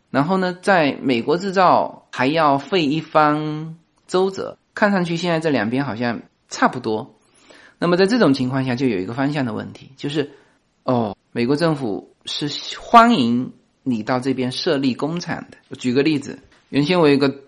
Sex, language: male, Chinese